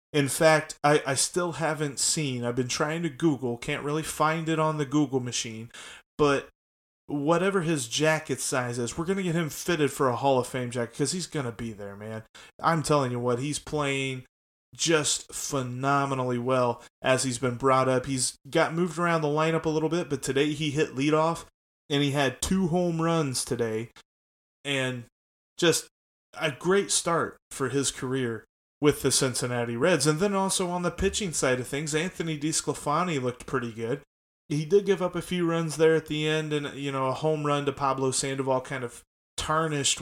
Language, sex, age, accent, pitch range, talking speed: English, male, 30-49, American, 130-155 Hz, 195 wpm